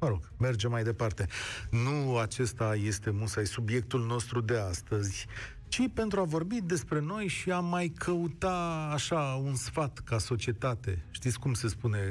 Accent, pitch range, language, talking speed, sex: native, 110-140 Hz, Romanian, 155 wpm, male